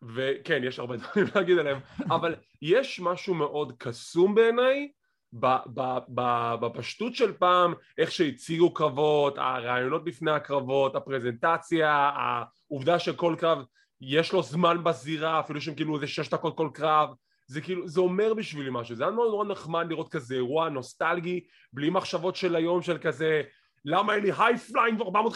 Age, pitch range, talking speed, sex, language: 20-39, 145-210 Hz, 160 wpm, male, English